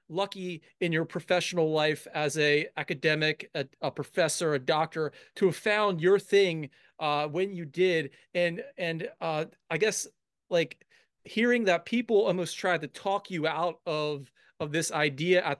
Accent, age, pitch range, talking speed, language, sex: American, 30-49, 160-200 Hz, 160 wpm, English, male